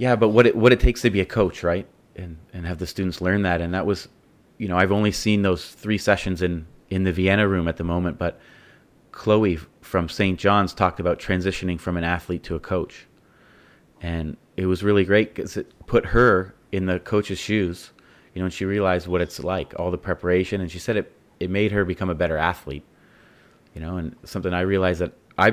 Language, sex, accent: English, male, American